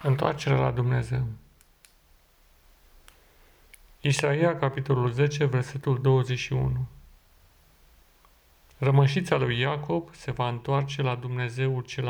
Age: 40-59